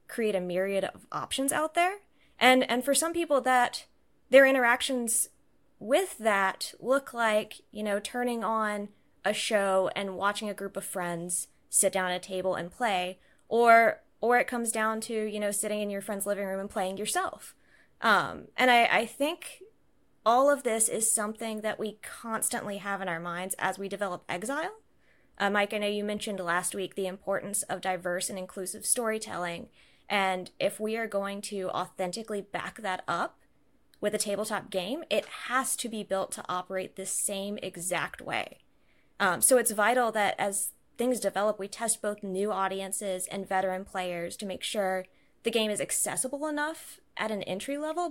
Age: 20-39